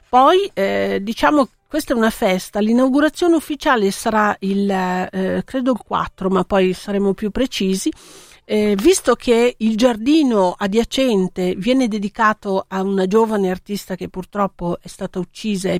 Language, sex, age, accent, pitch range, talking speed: Italian, female, 50-69, native, 185-235 Hz, 140 wpm